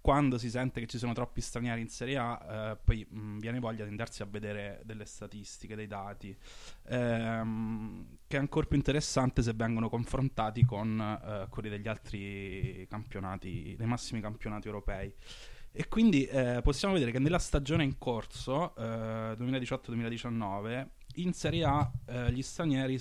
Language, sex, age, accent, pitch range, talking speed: Italian, male, 20-39, native, 110-135 Hz, 160 wpm